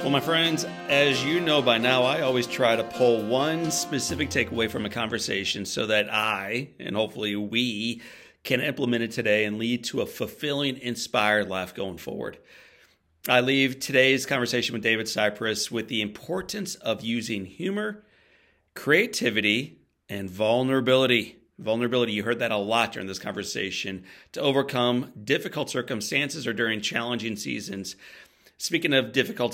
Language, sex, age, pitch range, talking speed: English, male, 40-59, 105-130 Hz, 150 wpm